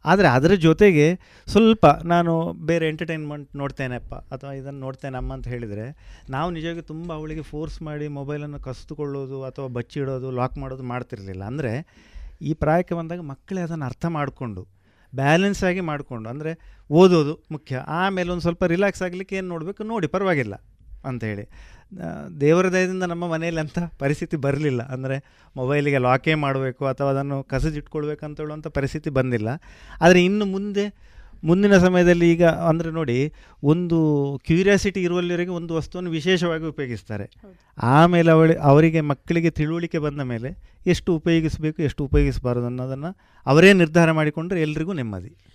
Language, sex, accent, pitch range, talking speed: Kannada, male, native, 135-175 Hz, 130 wpm